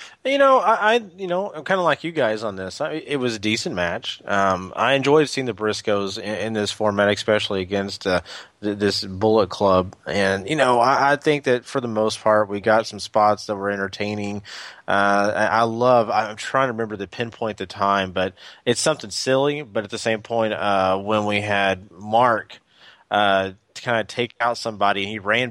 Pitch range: 105-140 Hz